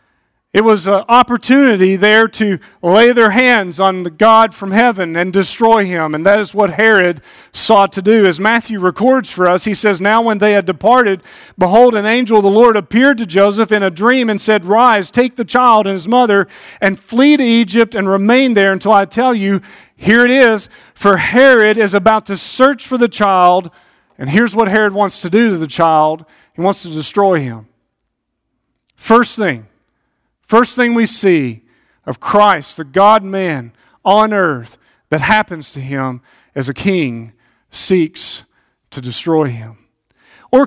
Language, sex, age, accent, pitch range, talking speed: English, male, 40-59, American, 185-230 Hz, 175 wpm